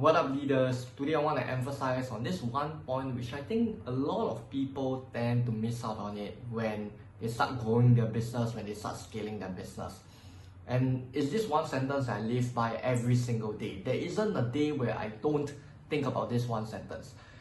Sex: male